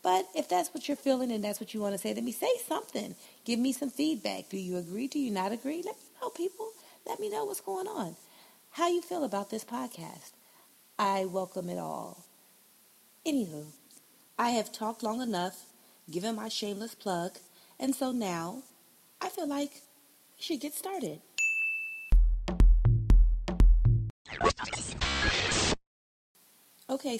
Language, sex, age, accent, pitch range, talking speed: English, female, 30-49, American, 175-265 Hz, 150 wpm